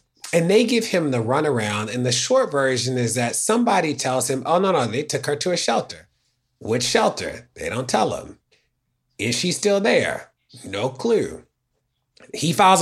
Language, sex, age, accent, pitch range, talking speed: English, male, 30-49, American, 125-155 Hz, 180 wpm